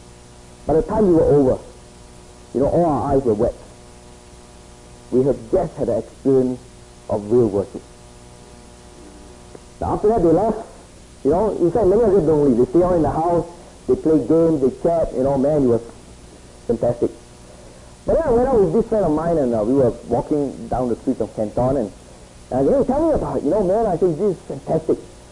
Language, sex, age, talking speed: English, male, 50-69, 215 wpm